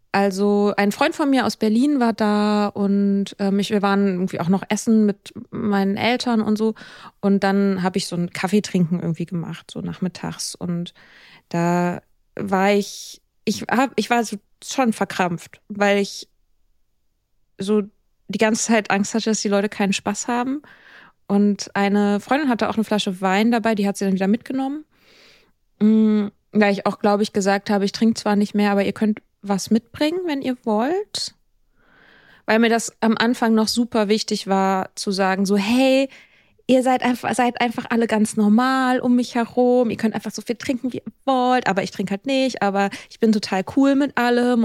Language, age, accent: German, 20-39, German